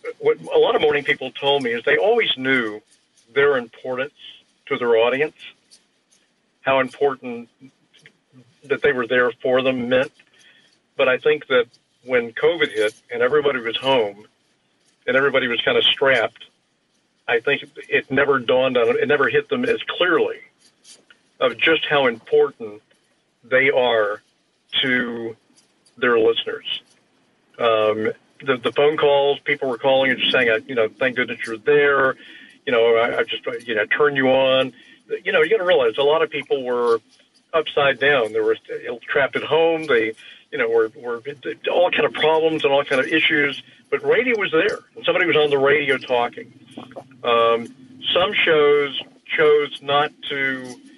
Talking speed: 165 wpm